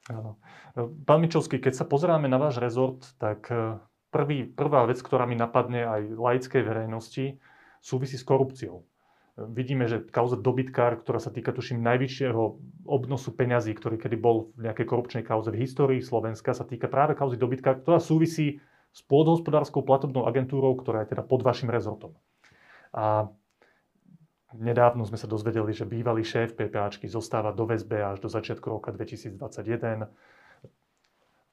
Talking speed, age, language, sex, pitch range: 145 wpm, 30-49, Slovak, male, 115-145 Hz